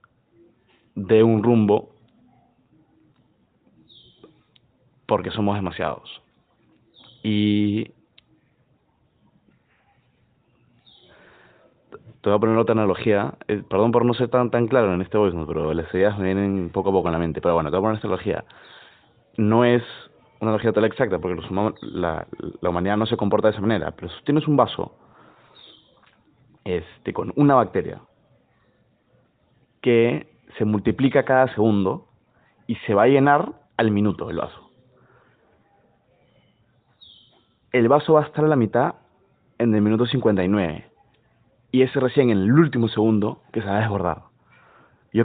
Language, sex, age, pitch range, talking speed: Spanish, male, 30-49, 95-120 Hz, 145 wpm